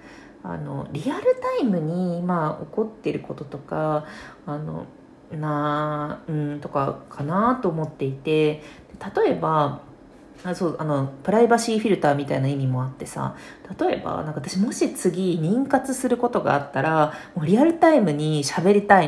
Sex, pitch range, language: female, 155-255 Hz, Japanese